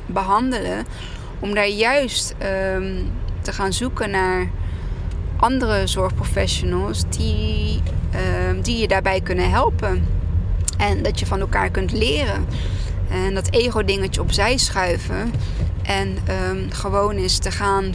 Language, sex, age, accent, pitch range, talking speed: Dutch, female, 20-39, Dutch, 85-95 Hz, 120 wpm